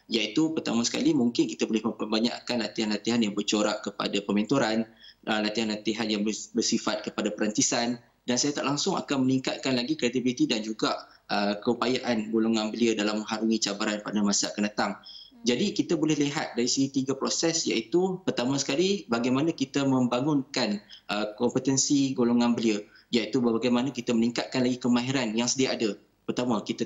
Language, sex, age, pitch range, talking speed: Malay, male, 20-39, 115-145 Hz, 145 wpm